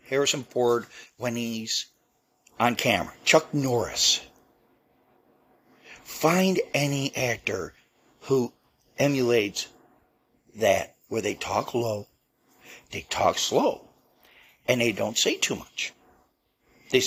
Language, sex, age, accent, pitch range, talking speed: English, male, 50-69, American, 120-145 Hz, 100 wpm